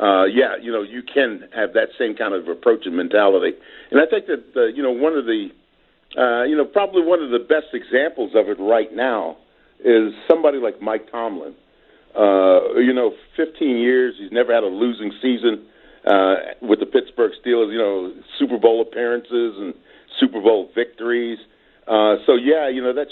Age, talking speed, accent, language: 50-69, 190 wpm, American, English